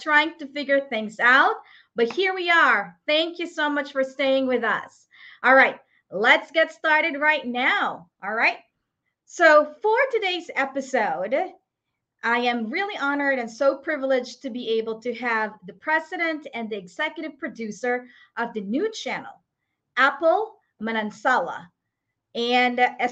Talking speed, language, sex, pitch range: 145 wpm, English, female, 240-320 Hz